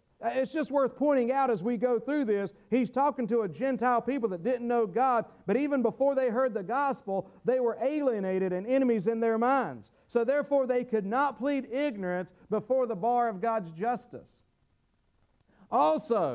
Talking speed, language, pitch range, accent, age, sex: 180 wpm, English, 205-285 Hz, American, 50-69, male